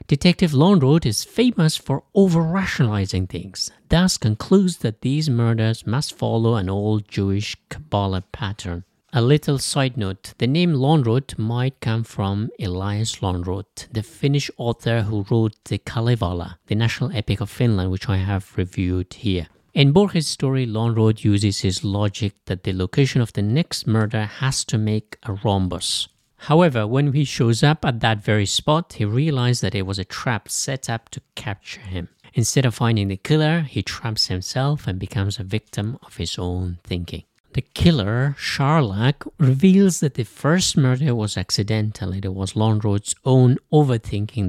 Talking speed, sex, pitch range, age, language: 160 wpm, male, 100-135 Hz, 50-69, English